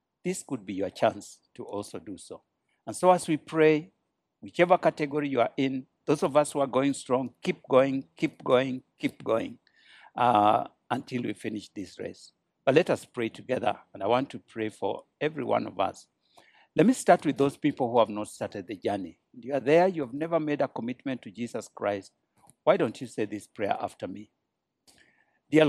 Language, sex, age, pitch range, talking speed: English, male, 60-79, 110-140 Hz, 200 wpm